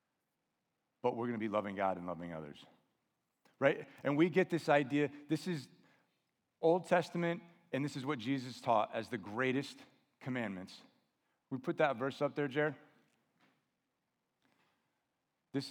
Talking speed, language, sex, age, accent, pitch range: 145 wpm, English, male, 40-59, American, 115-150 Hz